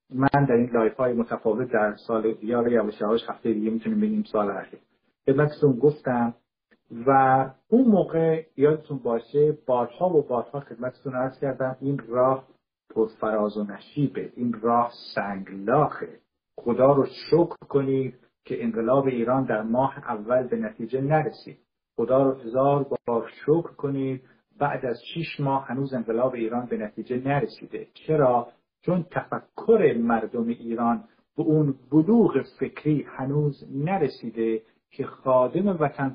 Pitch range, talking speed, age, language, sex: 115-150 Hz, 135 wpm, 50-69, Persian, male